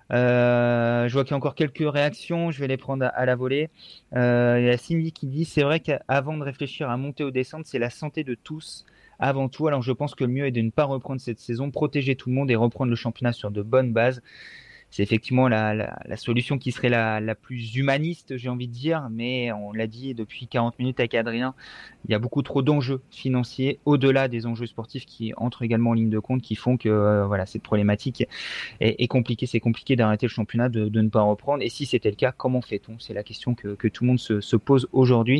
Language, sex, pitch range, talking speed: French, male, 115-140 Hz, 250 wpm